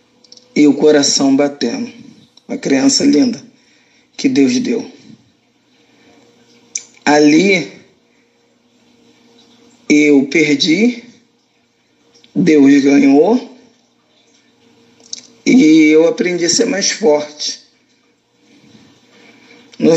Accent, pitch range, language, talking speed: Brazilian, 160-245 Hz, Portuguese, 70 wpm